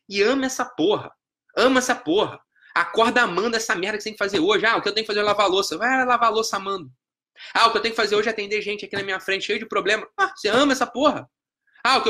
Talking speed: 295 wpm